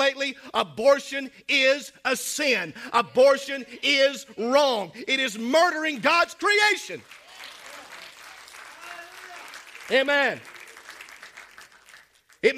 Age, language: 50-69, English